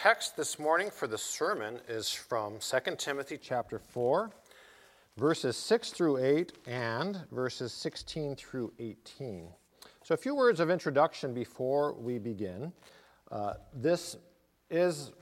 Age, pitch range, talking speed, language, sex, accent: 50-69, 125-170 Hz, 135 wpm, English, male, American